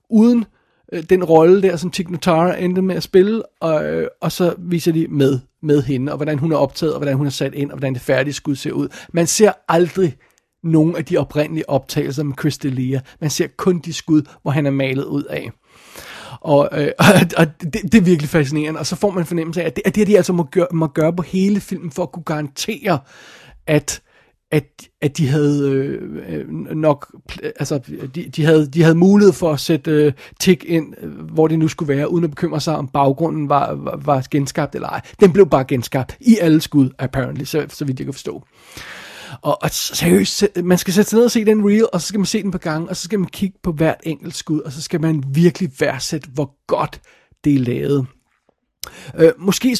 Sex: male